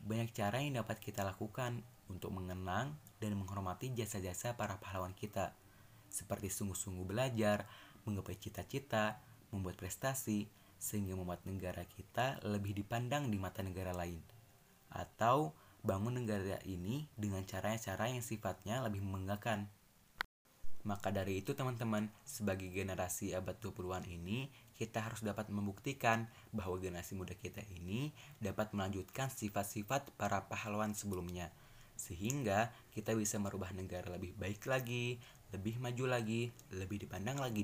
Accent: native